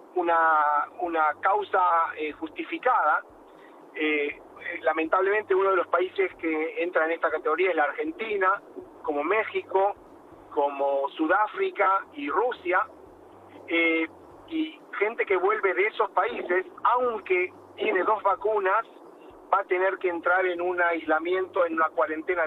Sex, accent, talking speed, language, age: male, Argentinian, 130 wpm, Spanish, 40-59